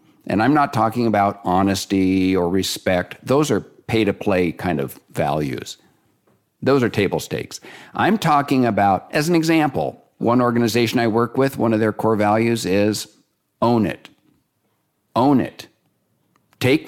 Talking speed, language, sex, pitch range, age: 140 wpm, English, male, 100-120 Hz, 50-69